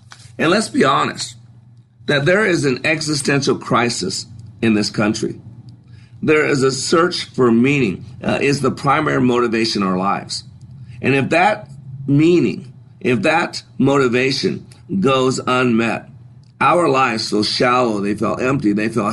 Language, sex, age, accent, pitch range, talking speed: English, male, 50-69, American, 115-135 Hz, 140 wpm